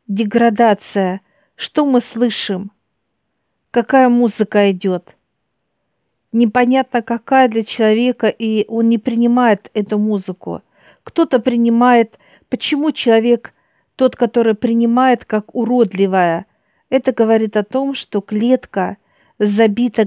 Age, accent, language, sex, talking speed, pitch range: 50-69, native, Russian, female, 100 wpm, 210-245 Hz